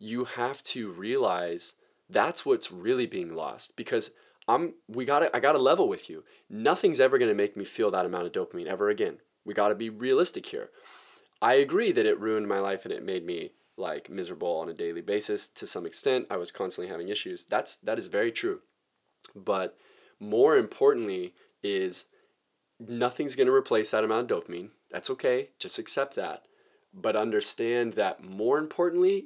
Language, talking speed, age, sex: English, 185 wpm, 20-39, male